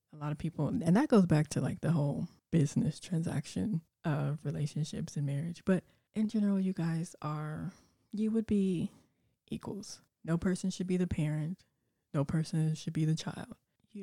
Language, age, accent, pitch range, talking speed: English, 20-39, American, 155-190 Hz, 175 wpm